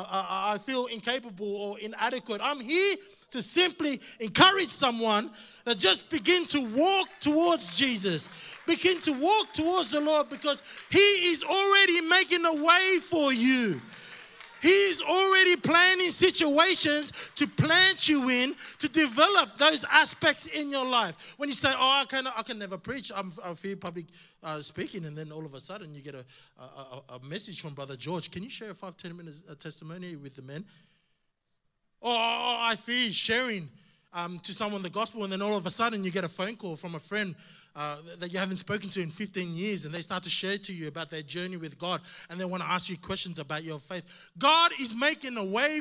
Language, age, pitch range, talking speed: English, 20-39, 185-305 Hz, 195 wpm